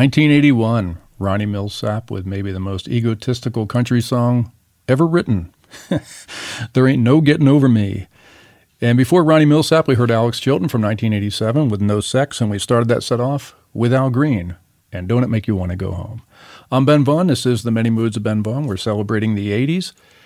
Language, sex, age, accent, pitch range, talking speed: English, male, 50-69, American, 100-125 Hz, 190 wpm